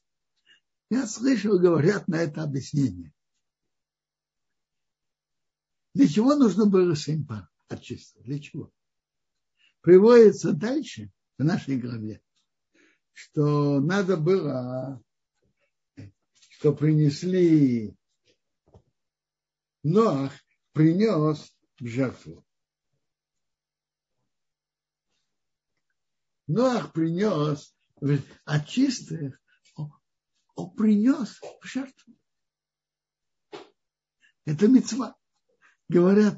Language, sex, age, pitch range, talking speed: Russian, male, 60-79, 145-205 Hz, 65 wpm